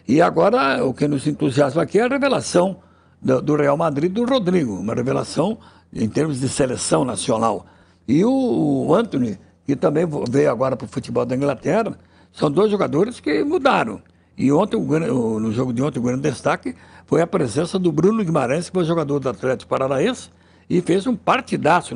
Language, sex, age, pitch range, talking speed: Portuguese, male, 60-79, 130-185 Hz, 175 wpm